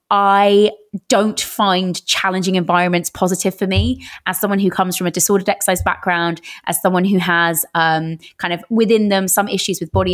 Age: 20-39